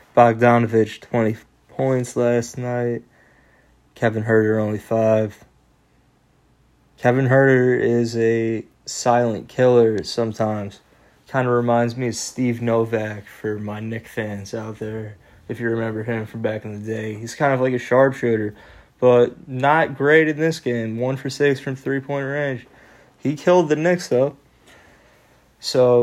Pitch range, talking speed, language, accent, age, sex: 115-130 Hz, 145 wpm, English, American, 20-39, male